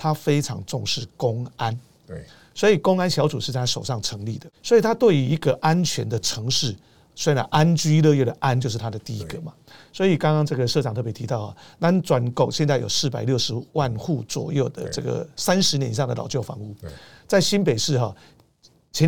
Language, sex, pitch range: Chinese, male, 120-155 Hz